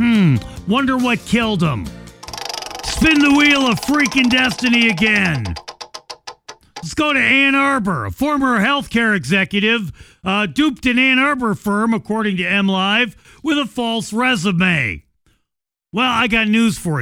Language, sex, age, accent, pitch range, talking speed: English, male, 50-69, American, 175-245 Hz, 140 wpm